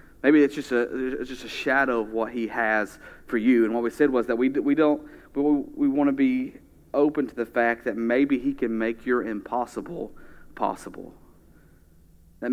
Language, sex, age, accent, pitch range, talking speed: English, male, 30-49, American, 105-135 Hz, 195 wpm